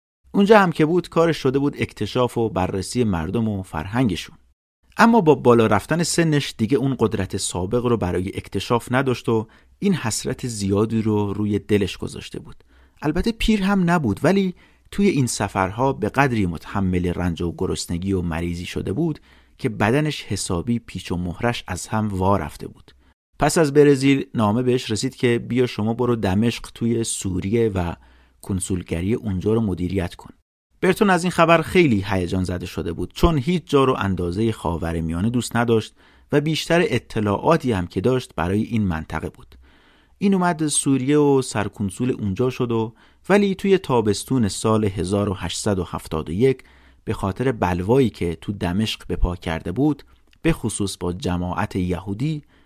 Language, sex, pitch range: Persian, male, 90-130 Hz